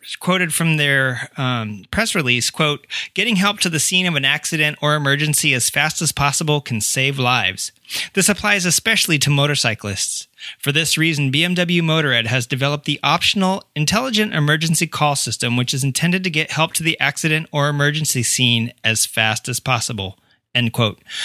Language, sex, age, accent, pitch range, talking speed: English, male, 30-49, American, 130-165 Hz, 170 wpm